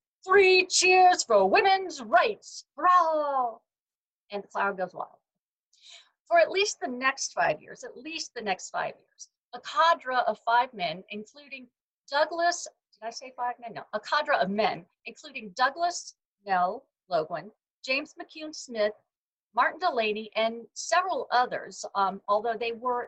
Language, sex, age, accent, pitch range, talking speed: English, female, 50-69, American, 210-305 Hz, 150 wpm